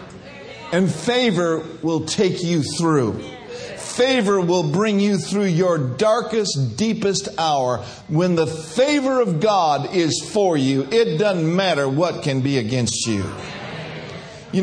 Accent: American